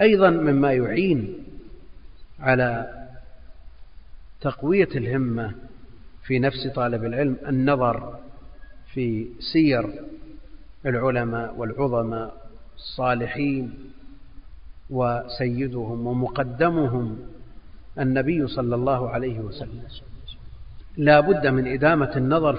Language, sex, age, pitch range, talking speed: Arabic, male, 50-69, 115-145 Hz, 75 wpm